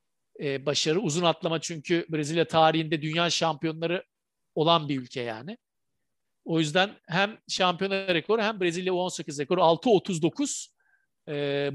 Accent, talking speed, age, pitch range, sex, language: native, 110 wpm, 50-69, 150-210 Hz, male, Turkish